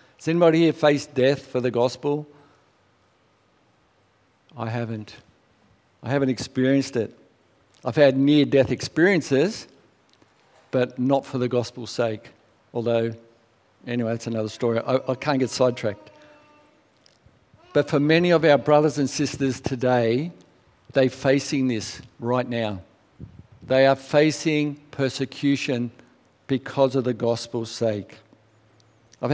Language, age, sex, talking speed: English, 50-69, male, 120 wpm